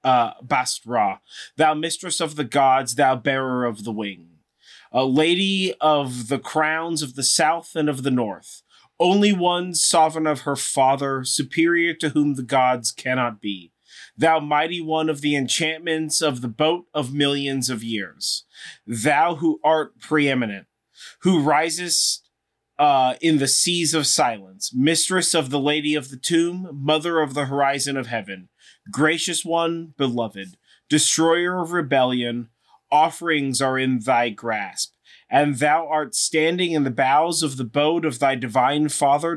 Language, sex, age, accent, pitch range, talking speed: English, male, 30-49, American, 130-165 Hz, 150 wpm